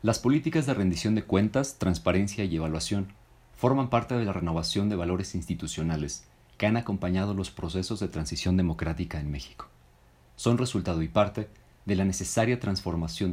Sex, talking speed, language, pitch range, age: male, 160 wpm, Spanish, 80-100 Hz, 40-59